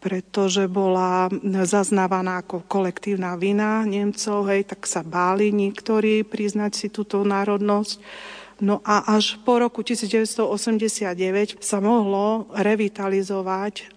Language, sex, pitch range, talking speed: Slovak, female, 190-220 Hz, 105 wpm